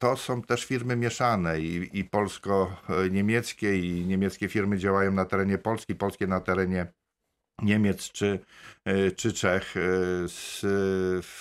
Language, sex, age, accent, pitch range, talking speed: Polish, male, 50-69, native, 90-95 Hz, 120 wpm